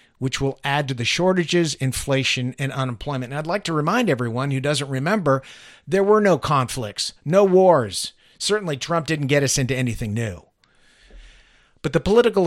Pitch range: 130-165 Hz